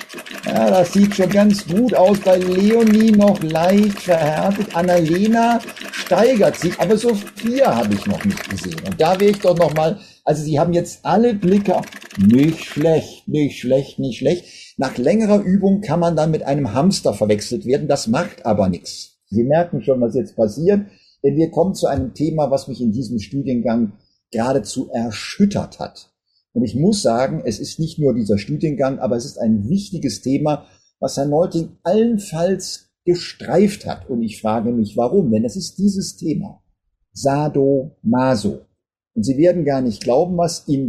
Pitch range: 135-195 Hz